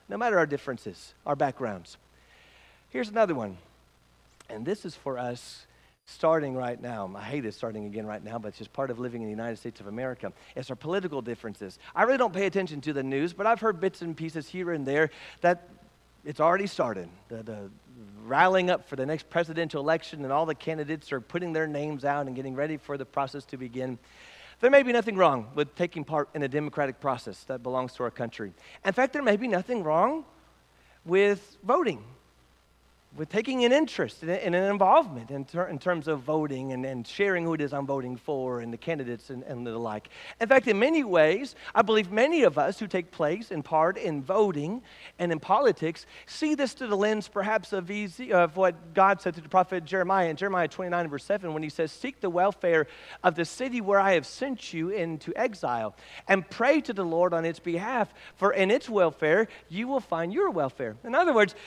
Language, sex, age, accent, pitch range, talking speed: English, male, 40-59, American, 130-195 Hz, 215 wpm